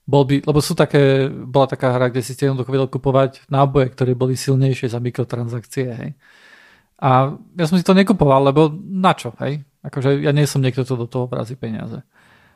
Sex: male